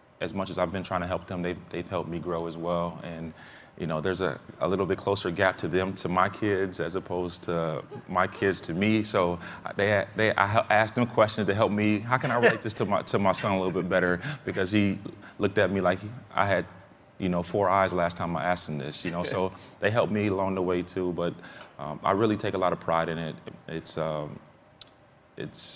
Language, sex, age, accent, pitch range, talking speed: English, male, 20-39, American, 80-95 Hz, 240 wpm